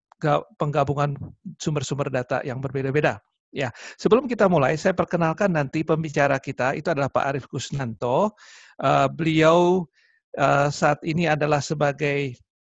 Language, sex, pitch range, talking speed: Indonesian, male, 140-170 Hz, 125 wpm